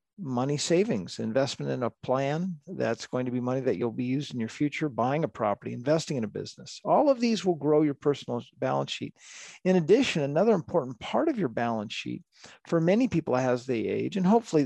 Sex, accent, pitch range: male, American, 125-160 Hz